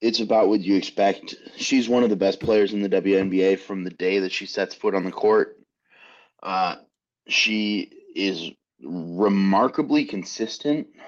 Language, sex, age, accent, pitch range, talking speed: English, male, 30-49, American, 100-125 Hz, 155 wpm